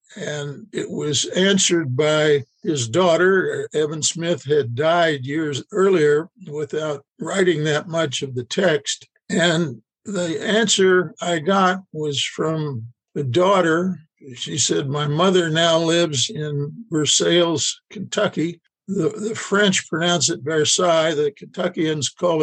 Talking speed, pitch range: 125 wpm, 150-185 Hz